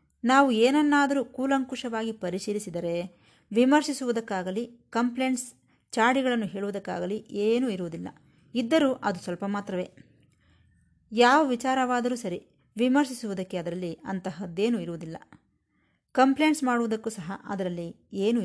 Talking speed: 85 wpm